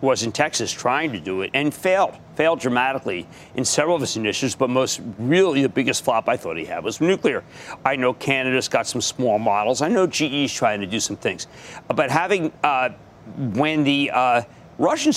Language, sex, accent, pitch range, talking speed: English, male, American, 130-165 Hz, 200 wpm